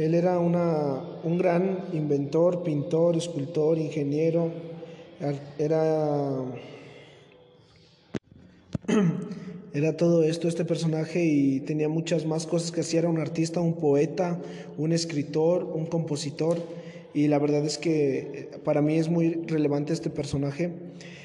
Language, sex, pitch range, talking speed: Spanish, male, 145-165 Hz, 120 wpm